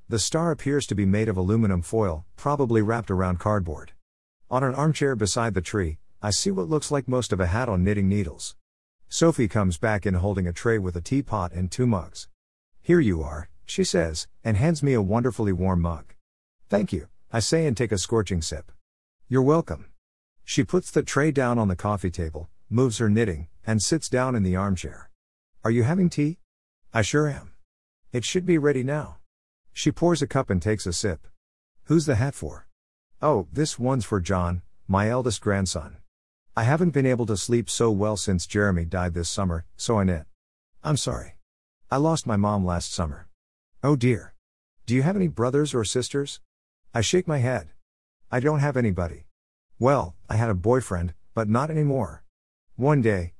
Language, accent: English, American